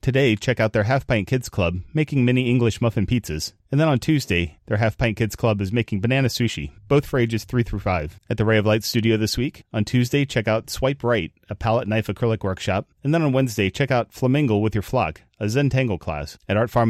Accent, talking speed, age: American, 240 wpm, 30-49